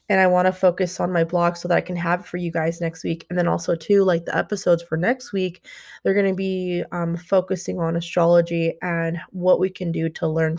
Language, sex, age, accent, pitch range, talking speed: English, female, 20-39, American, 165-190 Hz, 250 wpm